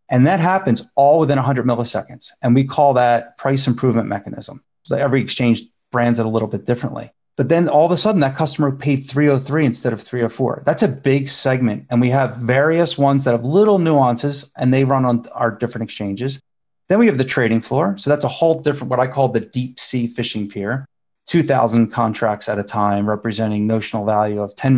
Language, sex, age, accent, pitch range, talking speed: English, male, 30-49, American, 115-140 Hz, 205 wpm